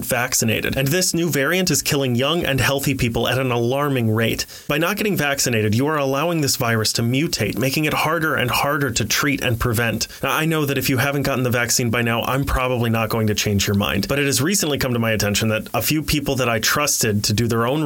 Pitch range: 115-140 Hz